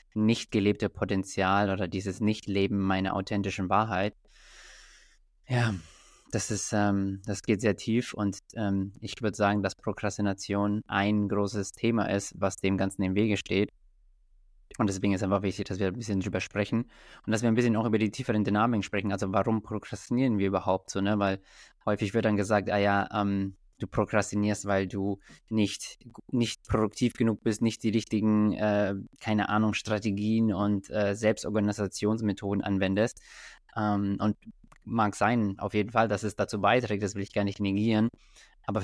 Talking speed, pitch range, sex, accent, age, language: 170 wpm, 100-110 Hz, male, German, 20-39, German